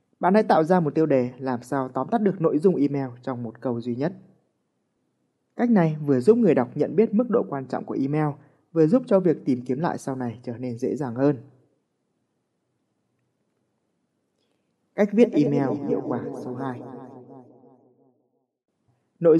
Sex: male